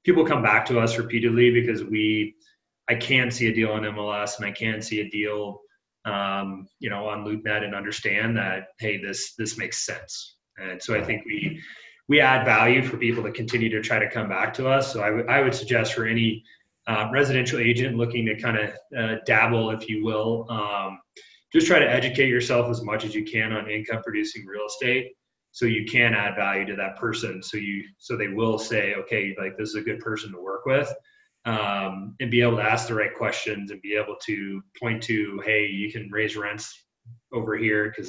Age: 30-49